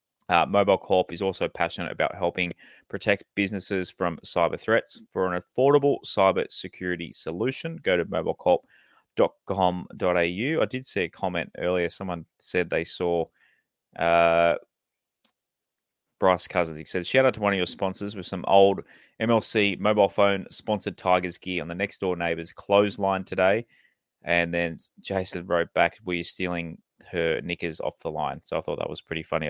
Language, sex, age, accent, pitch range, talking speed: English, male, 20-39, Australian, 85-100 Hz, 165 wpm